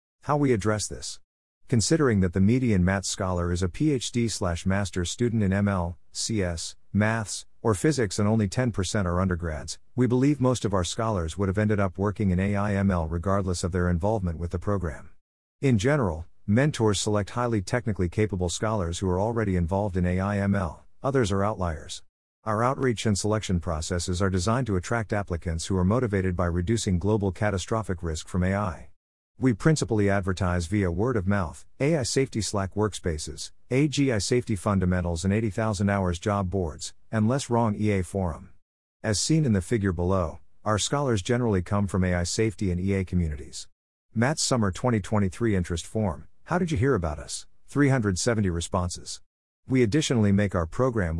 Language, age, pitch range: English, 50-69, 90-110 Hz